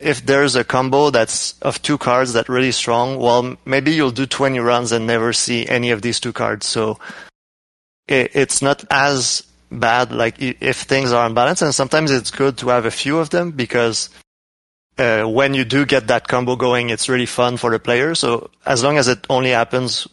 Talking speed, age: 200 wpm, 30-49